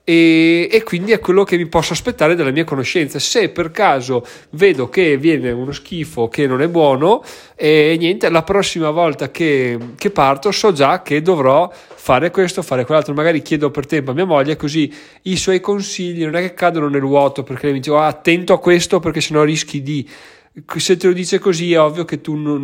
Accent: native